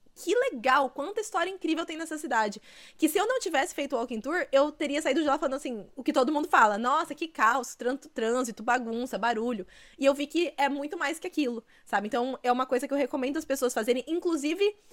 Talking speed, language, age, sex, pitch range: 225 wpm, Portuguese, 20-39, female, 220-280 Hz